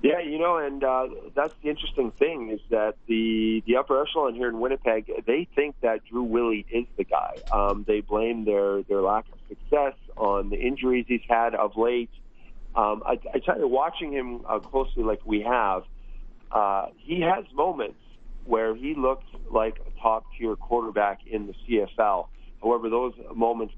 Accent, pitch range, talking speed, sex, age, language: American, 105-120 Hz, 180 wpm, male, 40-59, English